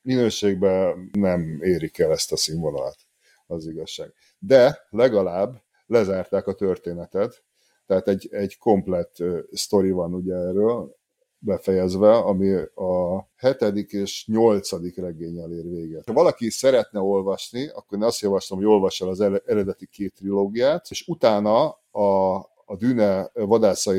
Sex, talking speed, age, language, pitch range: male, 130 wpm, 50-69, Hungarian, 90-110 Hz